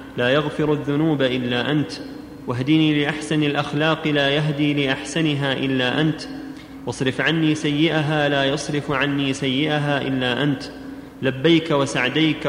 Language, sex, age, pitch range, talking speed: Arabic, male, 30-49, 135-155 Hz, 115 wpm